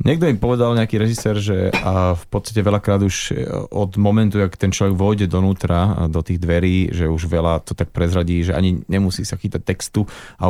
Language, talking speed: Slovak, 195 wpm